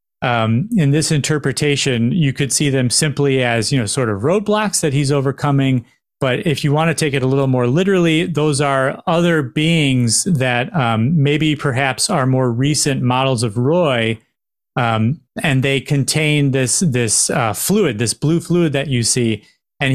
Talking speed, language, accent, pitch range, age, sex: 175 wpm, English, American, 125-150 Hz, 30-49, male